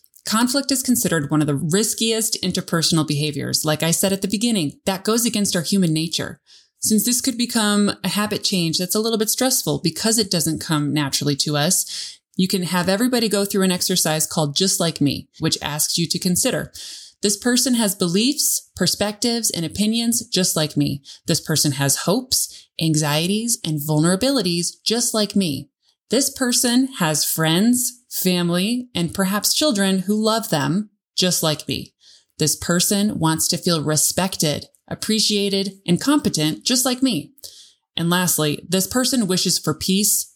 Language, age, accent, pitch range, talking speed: English, 20-39, American, 155-210 Hz, 165 wpm